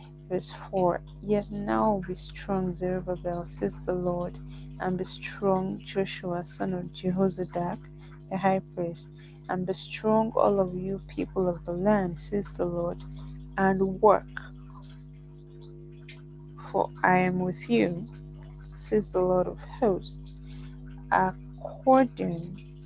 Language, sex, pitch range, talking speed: English, female, 150-185 Hz, 120 wpm